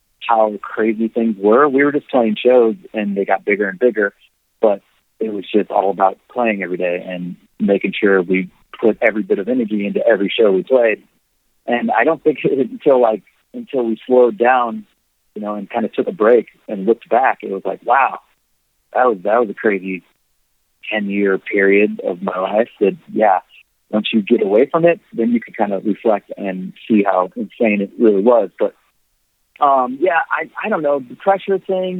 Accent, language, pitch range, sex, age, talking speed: American, English, 100-130 Hz, male, 30-49, 200 wpm